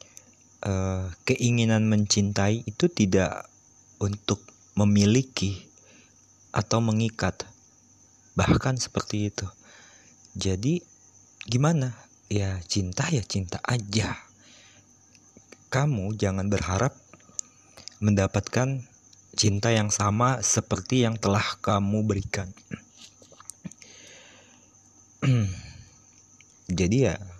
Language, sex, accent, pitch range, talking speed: Indonesian, male, native, 95-115 Hz, 70 wpm